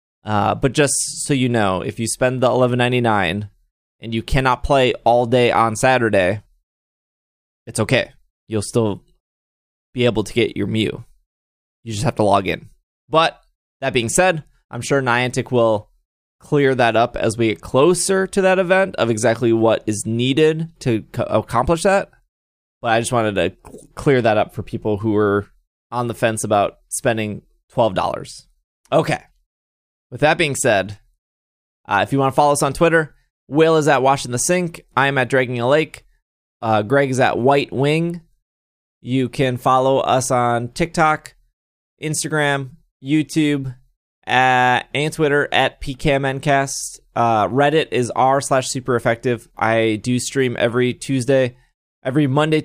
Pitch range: 105-140 Hz